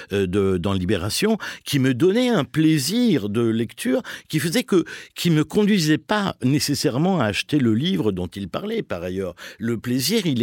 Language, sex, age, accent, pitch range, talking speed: French, male, 60-79, French, 105-160 Hz, 175 wpm